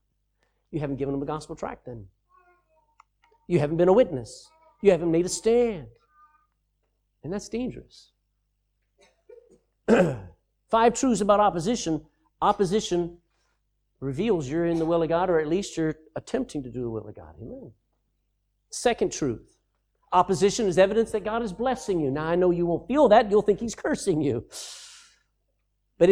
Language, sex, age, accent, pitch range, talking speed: English, male, 50-69, American, 155-245 Hz, 155 wpm